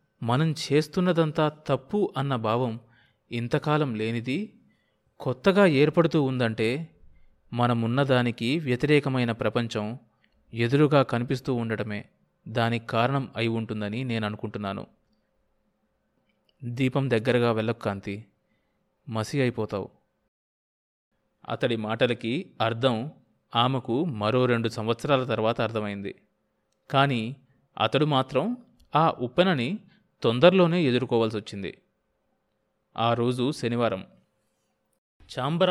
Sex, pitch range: male, 115-155 Hz